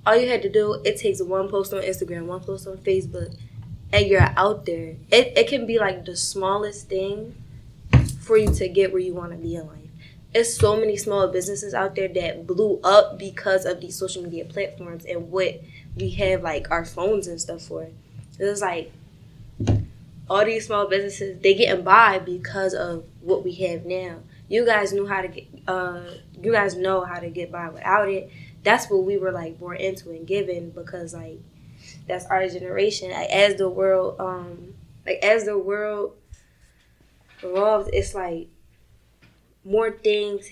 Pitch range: 170-200 Hz